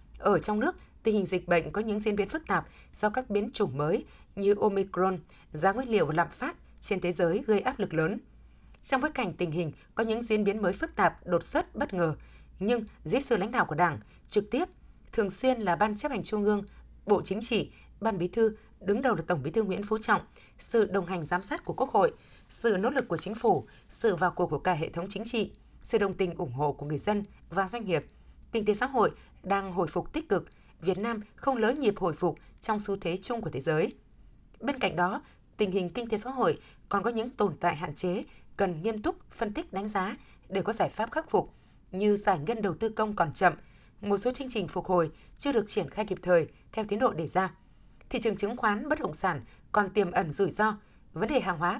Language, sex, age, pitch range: Vietnamese, female, 20-39, 180-225 Hz